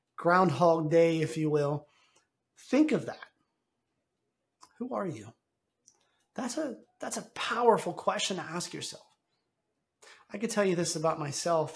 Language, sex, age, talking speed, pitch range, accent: English, male, 30-49, 140 wpm, 145-185 Hz, American